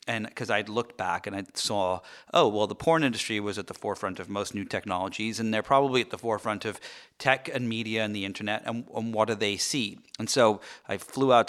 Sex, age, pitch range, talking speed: male, 30-49, 100-125 Hz, 235 wpm